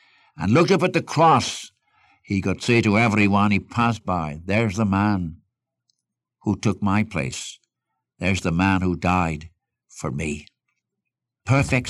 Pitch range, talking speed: 95-130 Hz, 145 wpm